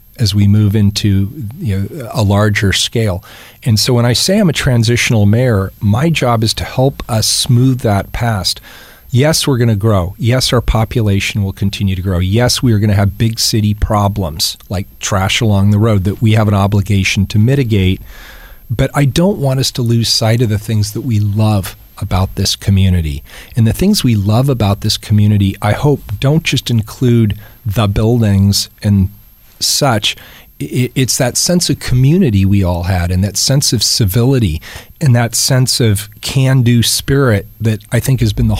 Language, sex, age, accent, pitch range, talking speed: English, male, 40-59, American, 100-125 Hz, 180 wpm